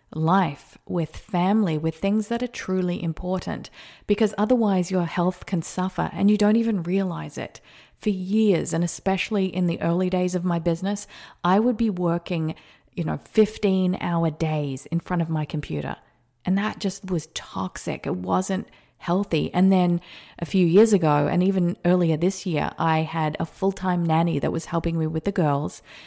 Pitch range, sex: 160-190 Hz, female